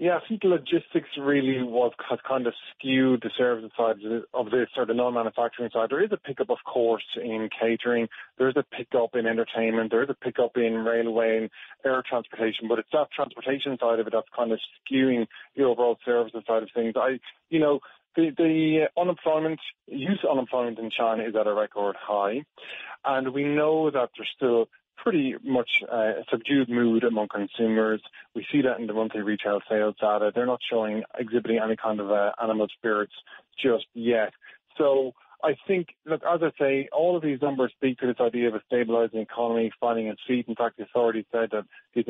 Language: English